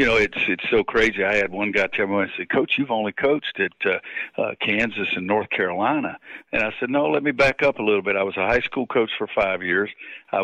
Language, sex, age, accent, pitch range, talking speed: English, male, 50-69, American, 100-130 Hz, 265 wpm